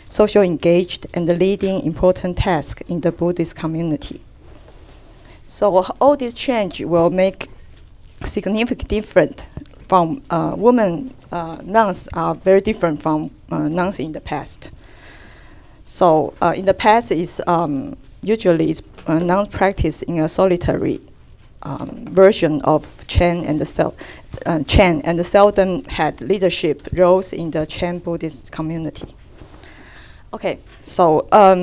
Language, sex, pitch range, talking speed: English, female, 160-190 Hz, 135 wpm